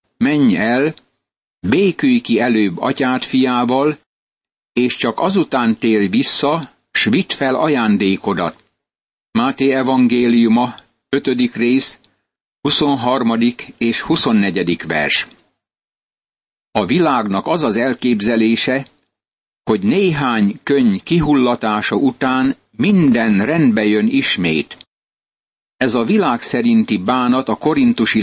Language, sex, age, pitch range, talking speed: Hungarian, male, 60-79, 115-150 Hz, 95 wpm